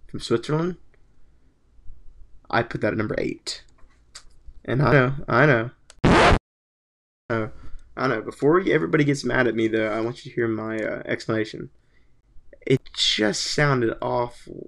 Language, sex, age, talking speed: English, male, 20-39, 145 wpm